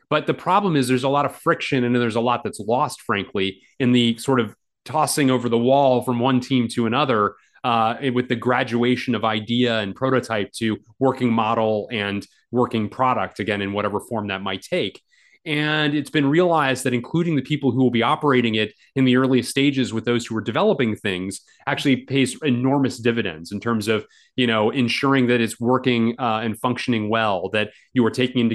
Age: 30-49